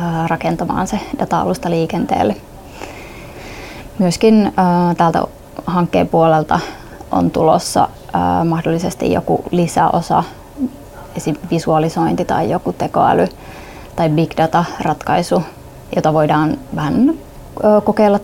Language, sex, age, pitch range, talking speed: Finnish, female, 20-39, 165-195 Hz, 90 wpm